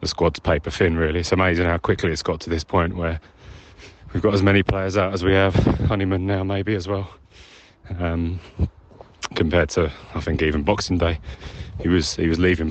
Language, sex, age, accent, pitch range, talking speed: English, male, 30-49, British, 80-95 Hz, 200 wpm